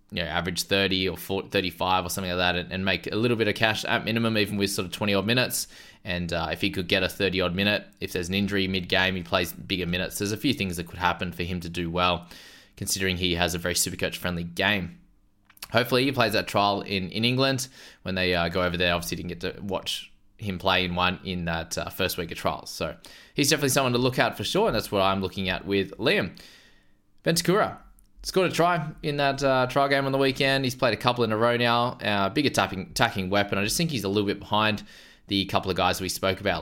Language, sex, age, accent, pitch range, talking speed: English, male, 20-39, Australian, 95-115 Hz, 260 wpm